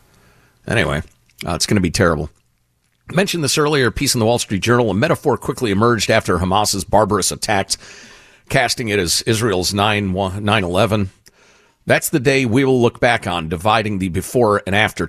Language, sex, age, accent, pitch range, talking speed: English, male, 50-69, American, 100-150 Hz, 175 wpm